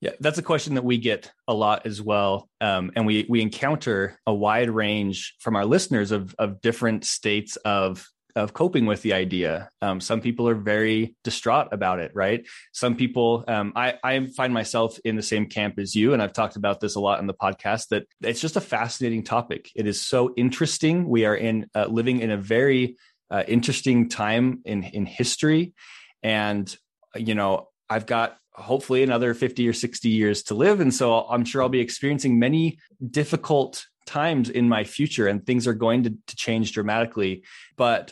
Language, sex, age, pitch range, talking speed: English, male, 20-39, 105-125 Hz, 195 wpm